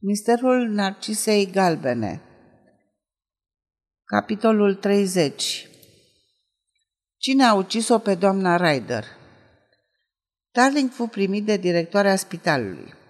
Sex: female